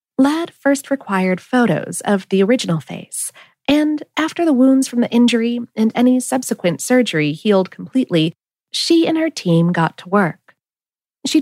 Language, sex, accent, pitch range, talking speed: English, female, American, 180-260 Hz, 150 wpm